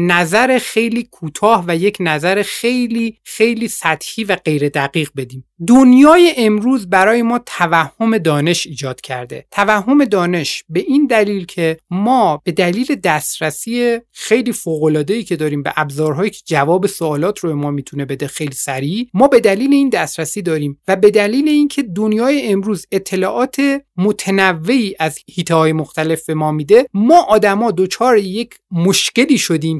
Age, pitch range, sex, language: 30-49, 170-245 Hz, male, Persian